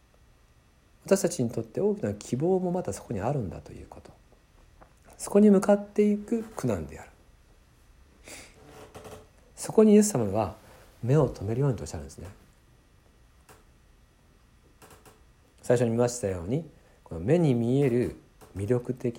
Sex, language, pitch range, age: male, Japanese, 95-130 Hz, 50-69